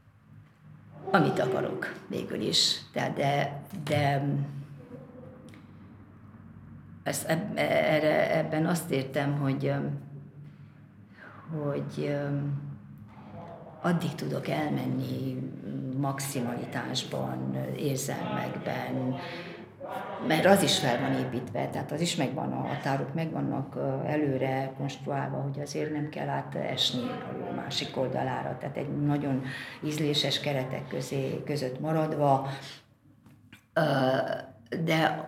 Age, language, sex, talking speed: 50-69, Hungarian, female, 80 wpm